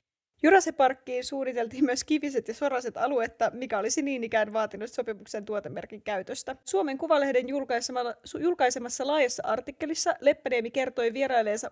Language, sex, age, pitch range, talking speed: Finnish, female, 20-39, 230-285 Hz, 125 wpm